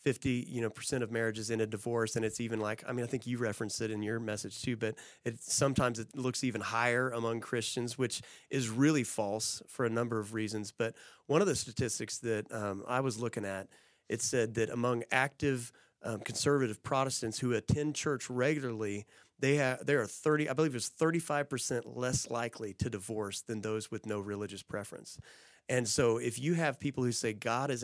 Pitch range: 115-140 Hz